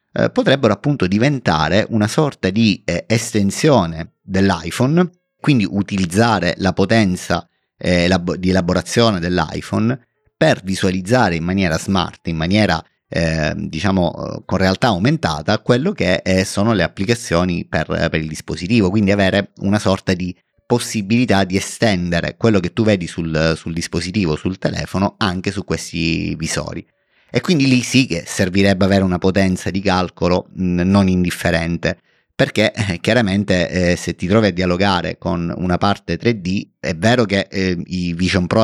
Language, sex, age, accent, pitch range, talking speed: Italian, male, 30-49, native, 85-105 Hz, 135 wpm